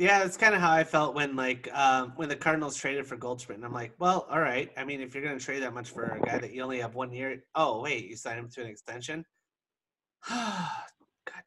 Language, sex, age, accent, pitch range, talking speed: English, male, 30-49, American, 125-160 Hz, 255 wpm